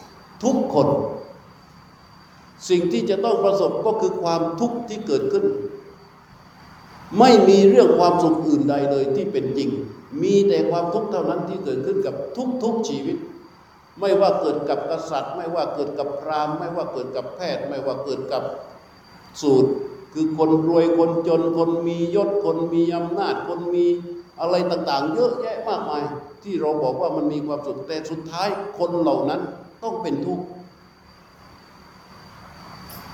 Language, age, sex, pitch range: Thai, 60-79, male, 165-220 Hz